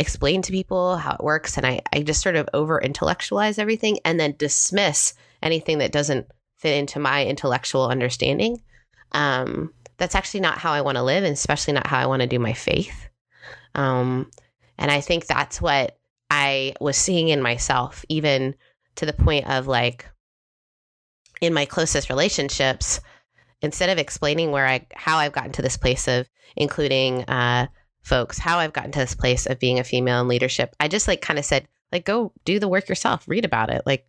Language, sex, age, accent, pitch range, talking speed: English, female, 20-39, American, 130-165 Hz, 190 wpm